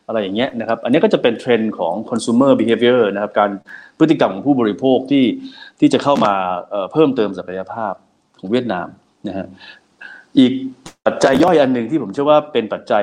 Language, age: Thai, 30-49